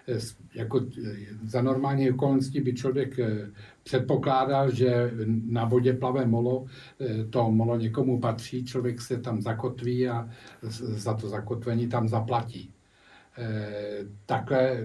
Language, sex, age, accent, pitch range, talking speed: English, male, 50-69, Czech, 110-125 Hz, 110 wpm